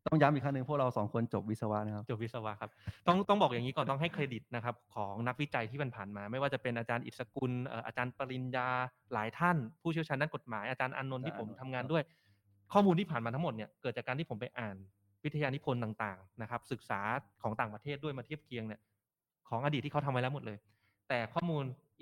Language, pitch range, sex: Thai, 115-150 Hz, male